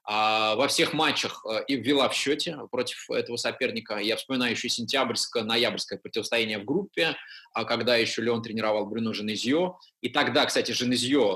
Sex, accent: male, native